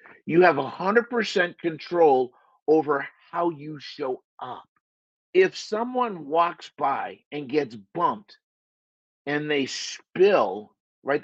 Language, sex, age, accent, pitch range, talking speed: English, male, 50-69, American, 170-240 Hz, 115 wpm